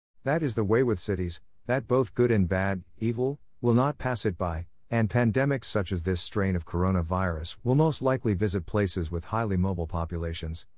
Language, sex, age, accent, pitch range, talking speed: English, male, 50-69, American, 90-115 Hz, 190 wpm